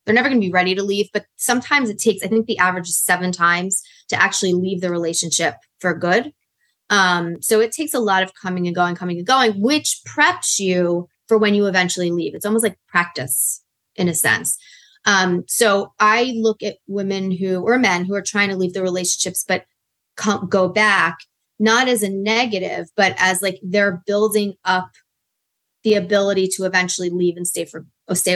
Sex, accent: female, American